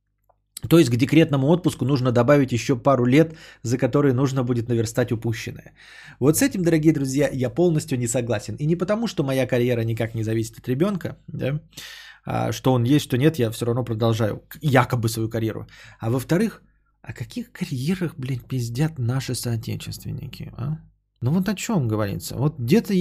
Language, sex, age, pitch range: Bulgarian, male, 20-39, 115-155 Hz